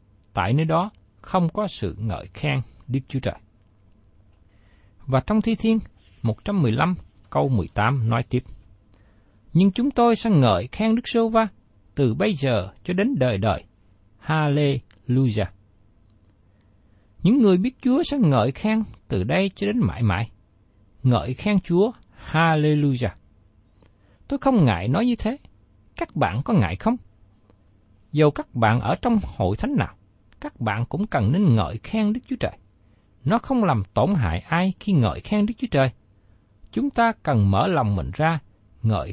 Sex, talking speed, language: male, 160 wpm, Vietnamese